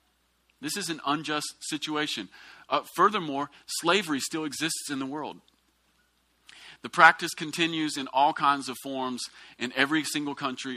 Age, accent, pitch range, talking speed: 40-59, American, 135-170 Hz, 140 wpm